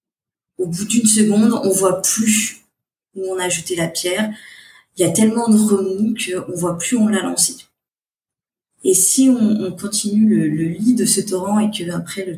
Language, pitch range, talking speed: French, 175-215 Hz, 205 wpm